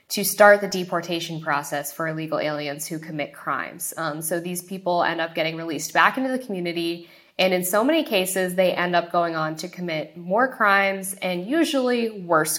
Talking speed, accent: 190 wpm, American